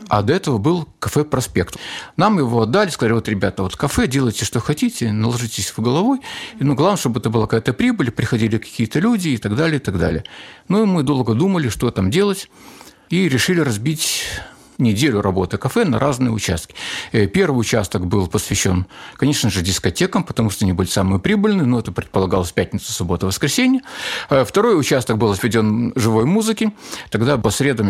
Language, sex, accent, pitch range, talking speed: Russian, male, native, 105-160 Hz, 170 wpm